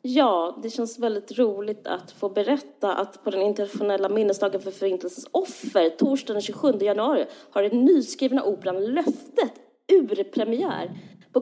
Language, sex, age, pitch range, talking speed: Swedish, female, 20-39, 200-270 Hz, 135 wpm